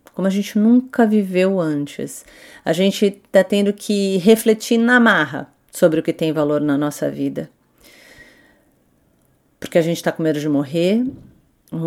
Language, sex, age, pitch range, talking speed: English, female, 40-59, 155-195 Hz, 150 wpm